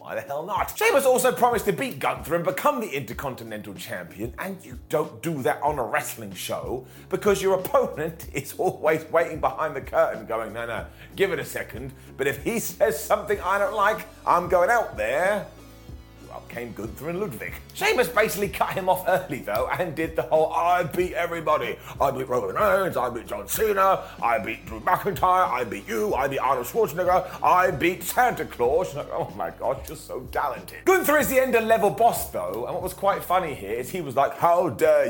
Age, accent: 30-49, British